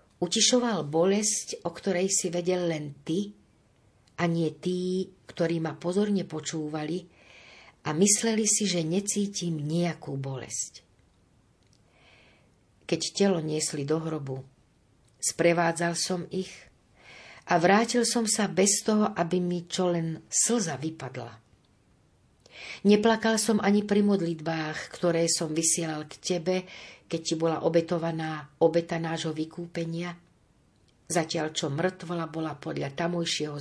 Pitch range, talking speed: 150-190 Hz, 115 wpm